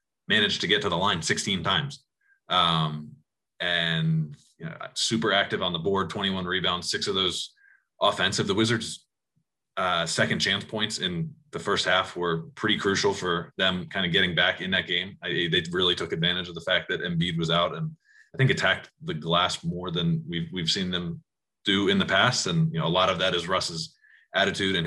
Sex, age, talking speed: male, 20-39, 205 wpm